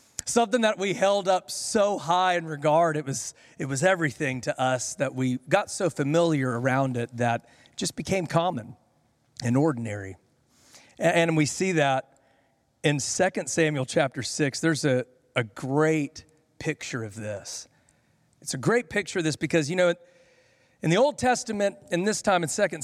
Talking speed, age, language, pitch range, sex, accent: 170 wpm, 40-59, English, 135-190 Hz, male, American